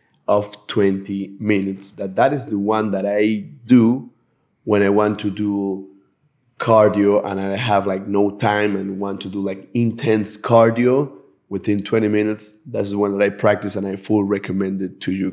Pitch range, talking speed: 100-120 Hz, 180 wpm